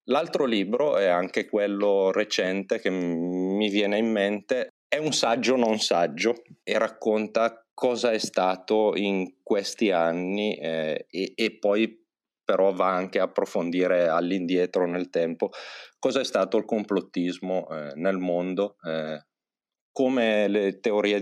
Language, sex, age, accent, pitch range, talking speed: Italian, male, 30-49, native, 90-105 Hz, 135 wpm